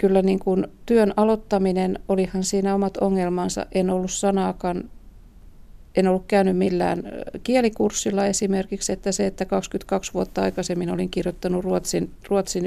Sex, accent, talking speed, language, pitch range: female, native, 135 wpm, Finnish, 180-215 Hz